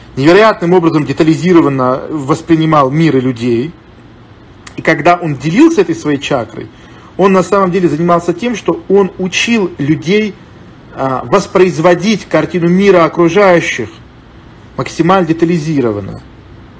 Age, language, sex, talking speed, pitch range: 40-59, Russian, male, 105 wpm, 125-175 Hz